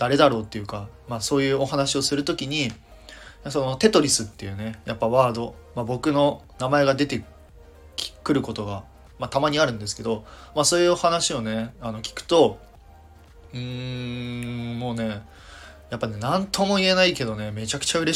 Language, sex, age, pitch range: Japanese, male, 20-39, 105-135 Hz